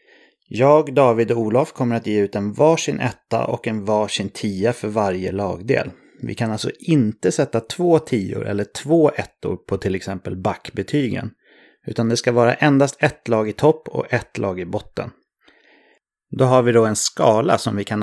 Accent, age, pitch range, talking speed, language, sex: Swedish, 30-49, 100-130 Hz, 185 wpm, English, male